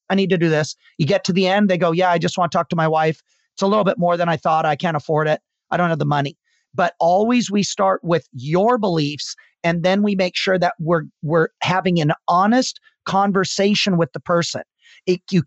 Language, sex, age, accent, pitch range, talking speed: English, male, 40-59, American, 165-195 Hz, 240 wpm